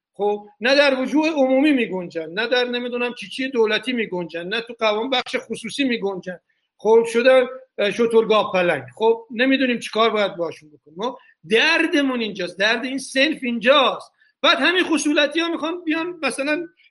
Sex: male